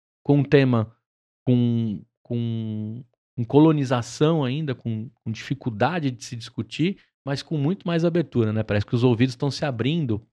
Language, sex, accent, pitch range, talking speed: Portuguese, male, Brazilian, 120-150 Hz, 155 wpm